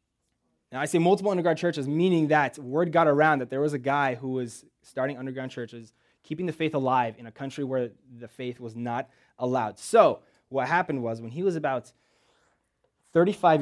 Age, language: 20-39, English